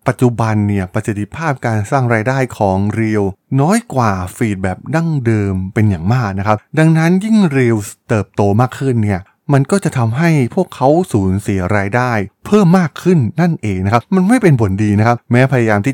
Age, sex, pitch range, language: 20-39, male, 100-130 Hz, Thai